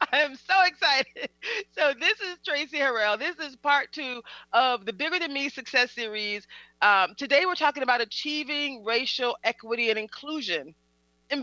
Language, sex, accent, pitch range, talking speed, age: English, female, American, 210-300 Hz, 165 wpm, 30-49